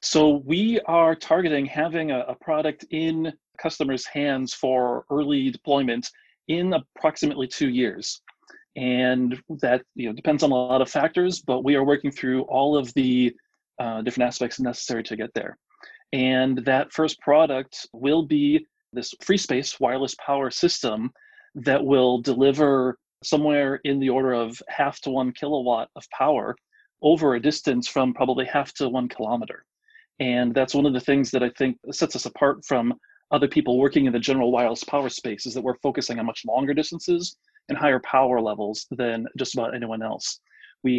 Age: 40-59